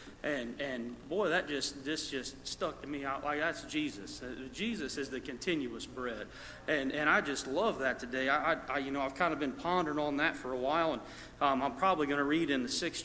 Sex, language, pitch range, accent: male, English, 130-155 Hz, American